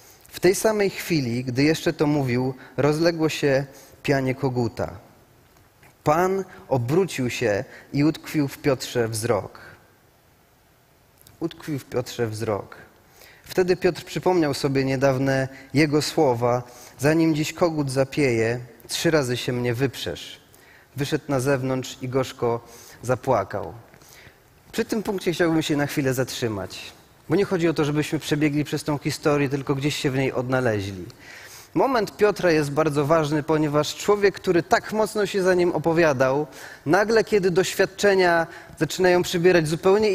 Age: 30-49